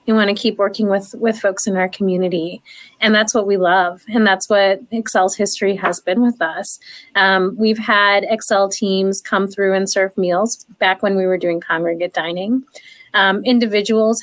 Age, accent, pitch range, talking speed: 30-49, American, 185-215 Hz, 185 wpm